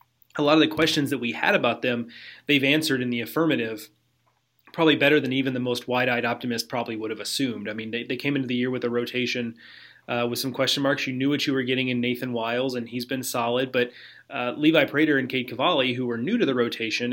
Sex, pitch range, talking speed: male, 120-135 Hz, 240 wpm